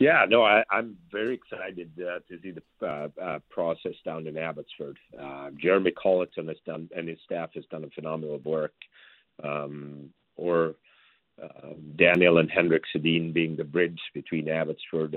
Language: English